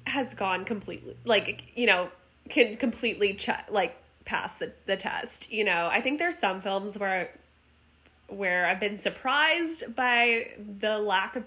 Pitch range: 190-245 Hz